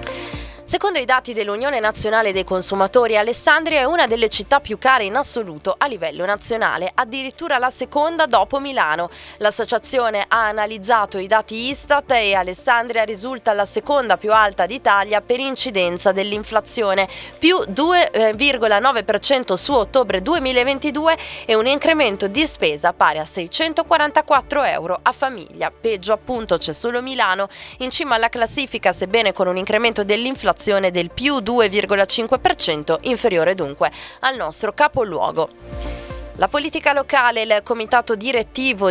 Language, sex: Italian, female